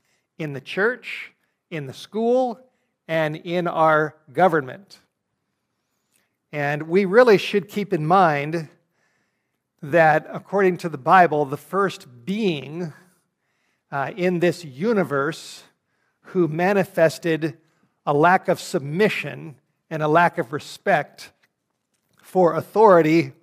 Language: English